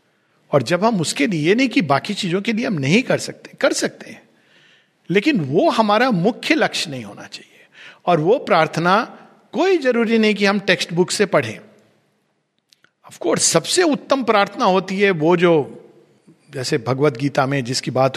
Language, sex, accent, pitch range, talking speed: Hindi, male, native, 145-195 Hz, 170 wpm